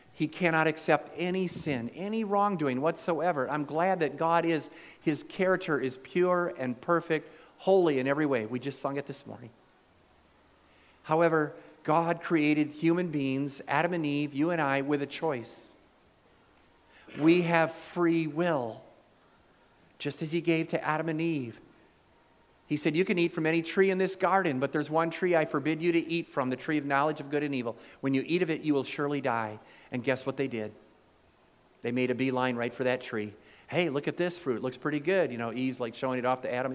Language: English